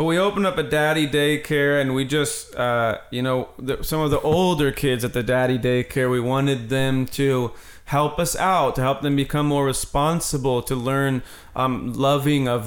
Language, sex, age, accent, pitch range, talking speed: English, male, 30-49, American, 125-150 Hz, 185 wpm